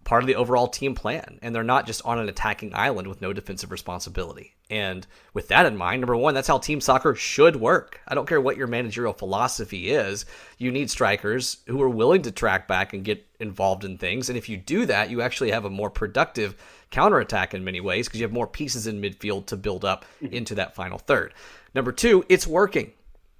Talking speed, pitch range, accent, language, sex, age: 220 wpm, 100-130 Hz, American, English, male, 30-49